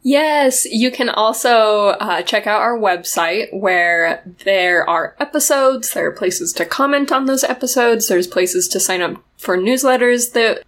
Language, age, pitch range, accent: English, 10-29, 195-255 Hz, American